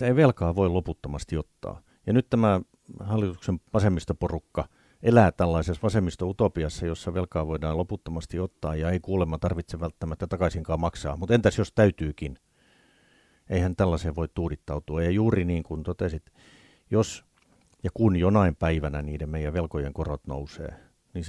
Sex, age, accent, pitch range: male, 50-69, native, 80-95 Hz